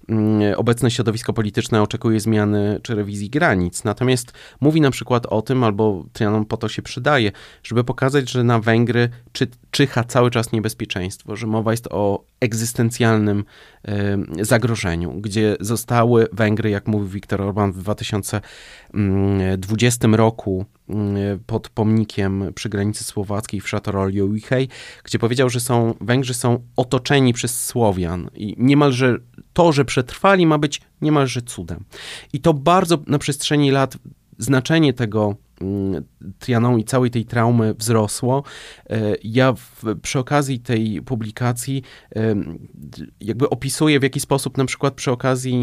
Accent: native